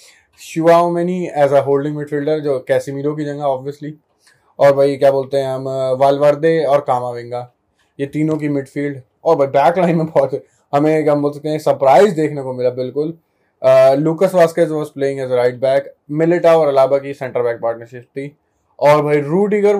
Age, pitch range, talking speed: 20-39, 130-155 Hz, 175 wpm